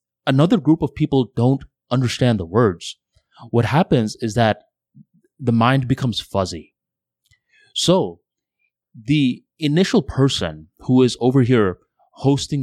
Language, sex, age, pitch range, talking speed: English, male, 20-39, 105-135 Hz, 120 wpm